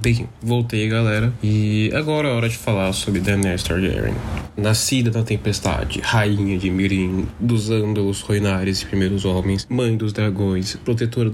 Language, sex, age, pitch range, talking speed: Portuguese, male, 10-29, 95-115 Hz, 150 wpm